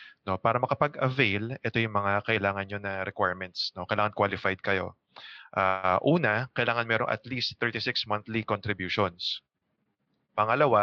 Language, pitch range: English, 100-115 Hz